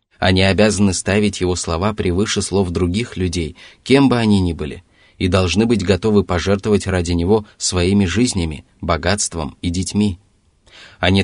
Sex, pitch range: male, 85-105 Hz